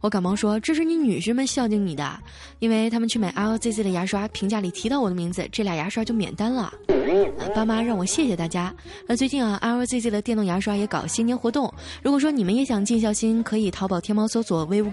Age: 20-39